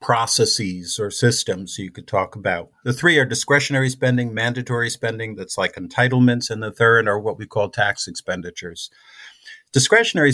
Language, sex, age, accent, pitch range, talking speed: English, male, 50-69, American, 110-135 Hz, 155 wpm